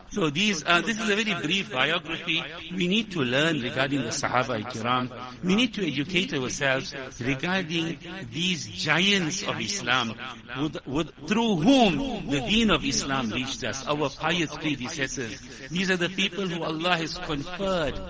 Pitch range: 130-165 Hz